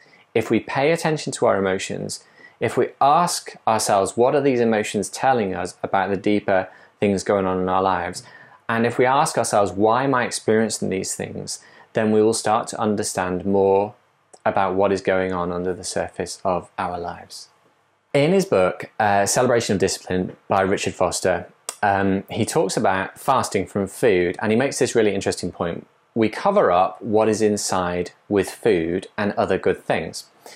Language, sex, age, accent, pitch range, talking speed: English, male, 20-39, British, 95-115 Hz, 180 wpm